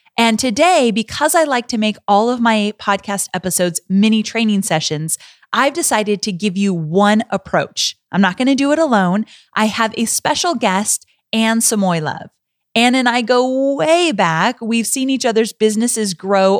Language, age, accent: English, 30-49, American